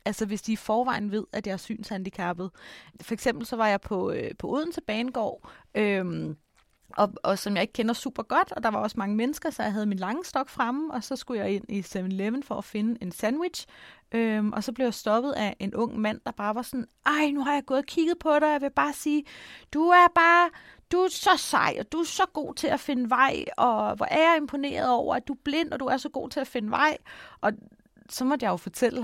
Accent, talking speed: native, 255 wpm